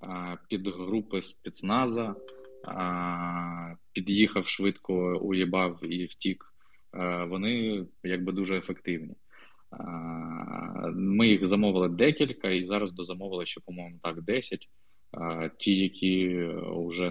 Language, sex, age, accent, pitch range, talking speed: Ukrainian, male, 20-39, native, 85-100 Hz, 90 wpm